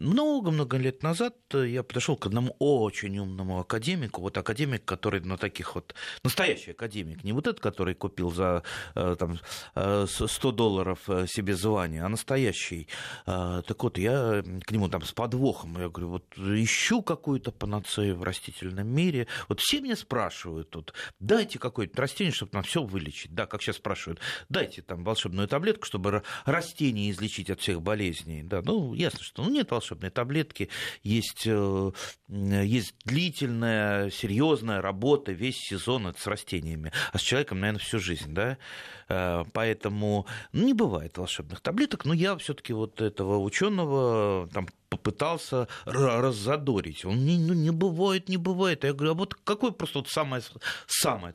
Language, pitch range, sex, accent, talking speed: Russian, 95-140 Hz, male, native, 150 wpm